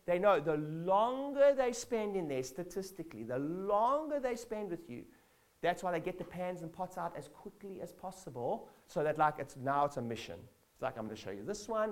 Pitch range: 155-210 Hz